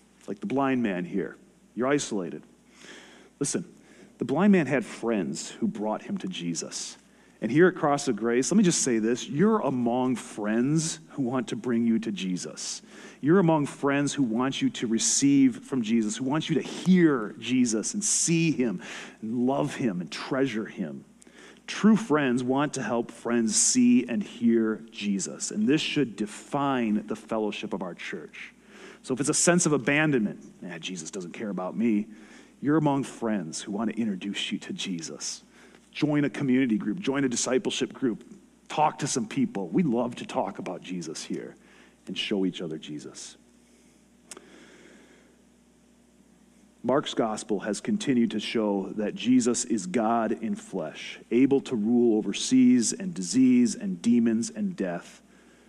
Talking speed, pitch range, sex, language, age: 165 wpm, 115-165 Hz, male, English, 40-59